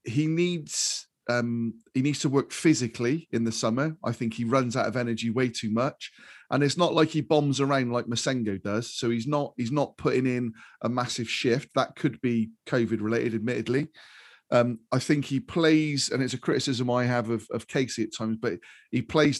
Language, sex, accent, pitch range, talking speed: English, male, British, 120-155 Hz, 205 wpm